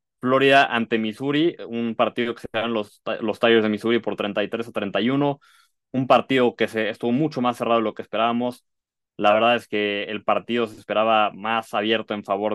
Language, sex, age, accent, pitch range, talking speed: Spanish, male, 20-39, Mexican, 105-120 Hz, 195 wpm